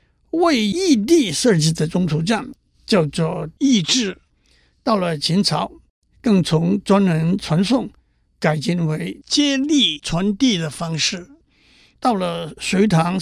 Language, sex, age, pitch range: Chinese, male, 60-79, 165-230 Hz